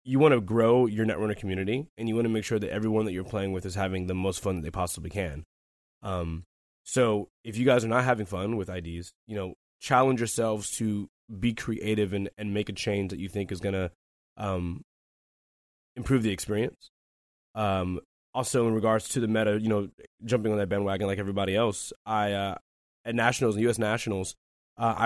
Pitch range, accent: 95-115 Hz, American